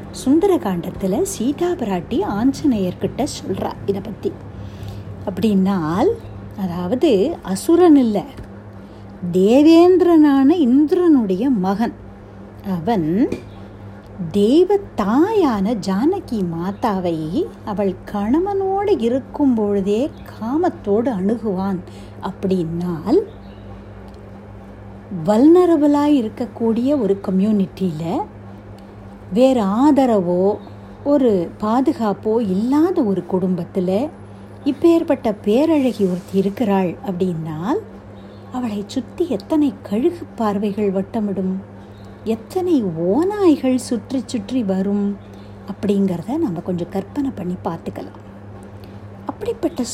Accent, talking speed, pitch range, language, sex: native, 70 wpm, 175-265 Hz, Tamil, female